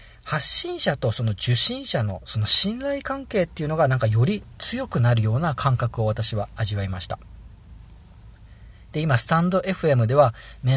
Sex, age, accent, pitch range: male, 40-59, native, 110-170 Hz